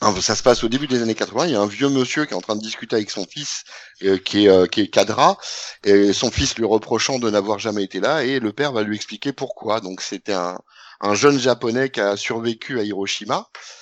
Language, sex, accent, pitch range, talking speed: French, male, French, 100-130 Hz, 250 wpm